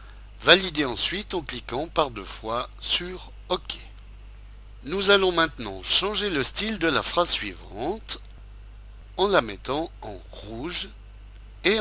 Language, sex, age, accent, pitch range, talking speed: French, male, 60-79, French, 100-160 Hz, 125 wpm